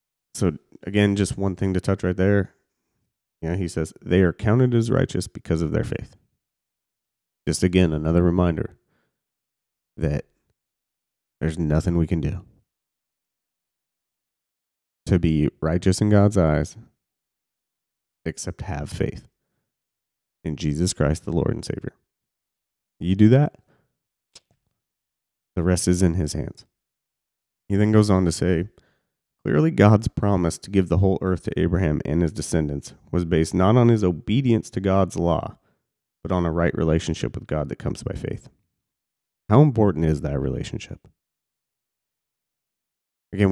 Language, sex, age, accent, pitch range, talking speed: English, male, 30-49, American, 80-100 Hz, 140 wpm